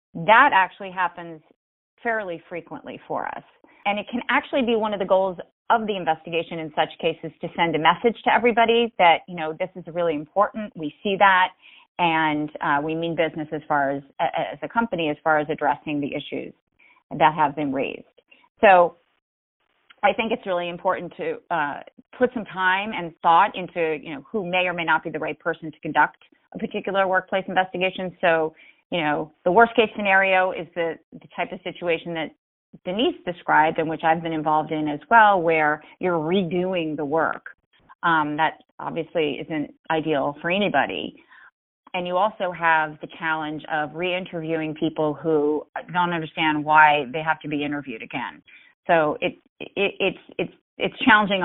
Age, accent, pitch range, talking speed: 30-49, American, 160-190 Hz, 175 wpm